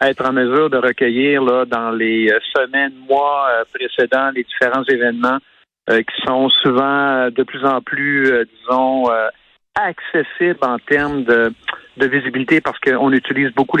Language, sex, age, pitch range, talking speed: French, male, 50-69, 115-135 Hz, 150 wpm